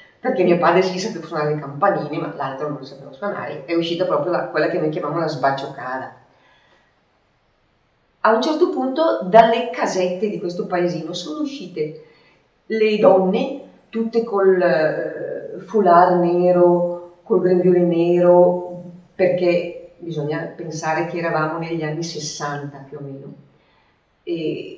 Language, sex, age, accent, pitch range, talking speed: Italian, female, 30-49, native, 145-185 Hz, 135 wpm